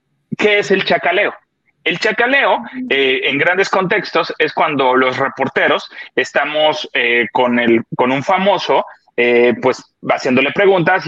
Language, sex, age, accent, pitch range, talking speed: Spanish, male, 30-49, Mexican, 130-215 Hz, 135 wpm